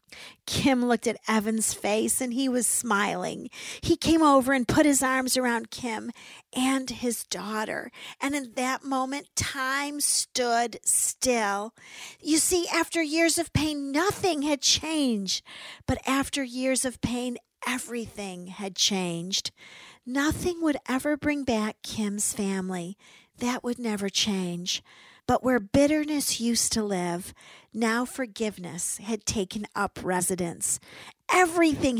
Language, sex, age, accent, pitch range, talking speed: English, female, 50-69, American, 205-270 Hz, 130 wpm